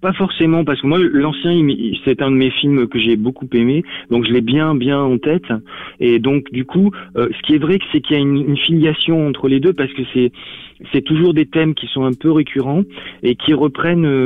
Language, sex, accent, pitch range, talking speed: French, male, French, 120-150 Hz, 230 wpm